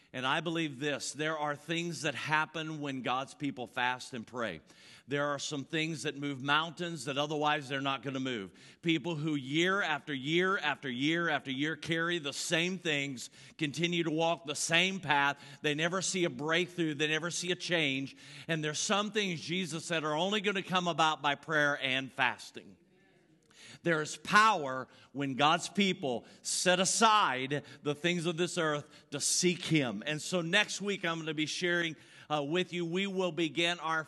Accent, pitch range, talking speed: American, 135-170 Hz, 185 wpm